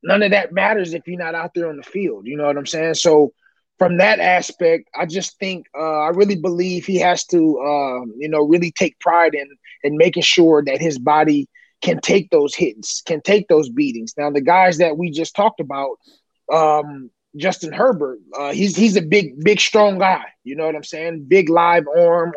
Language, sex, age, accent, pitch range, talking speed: English, male, 20-39, American, 160-200 Hz, 210 wpm